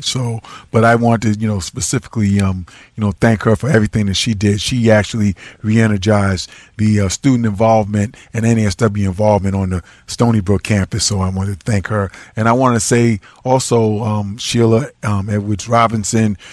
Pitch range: 105-115 Hz